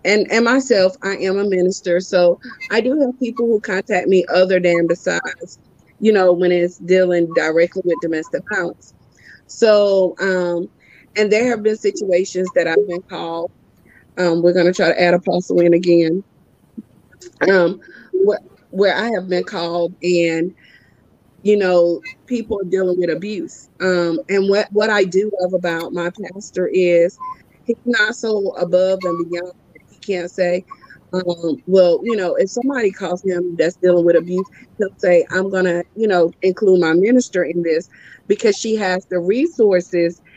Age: 30-49